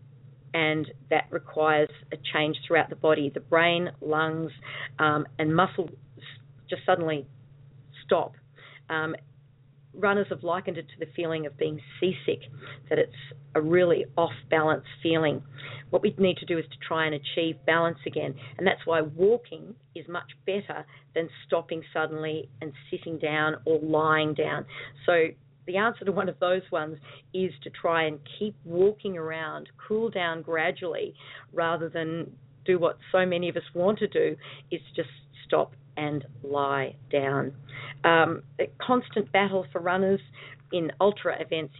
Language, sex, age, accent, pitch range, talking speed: English, female, 40-59, Australian, 140-170 Hz, 150 wpm